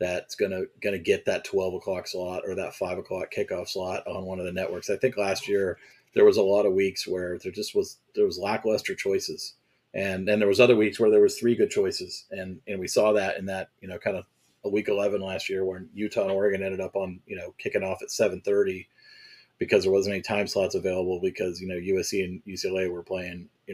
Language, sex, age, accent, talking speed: English, male, 30-49, American, 240 wpm